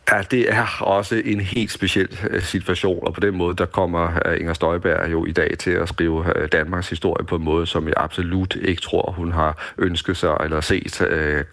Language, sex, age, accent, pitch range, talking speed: Danish, male, 40-59, native, 85-95 Hz, 205 wpm